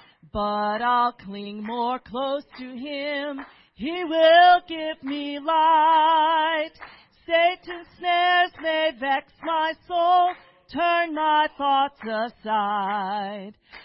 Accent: American